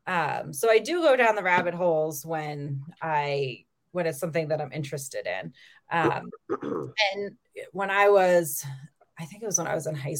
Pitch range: 155-195 Hz